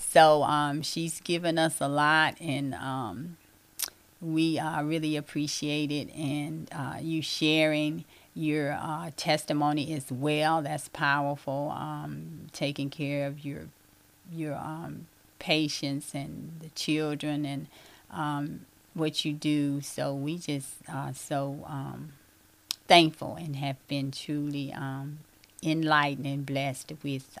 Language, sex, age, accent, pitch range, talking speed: English, female, 30-49, American, 145-170 Hz, 125 wpm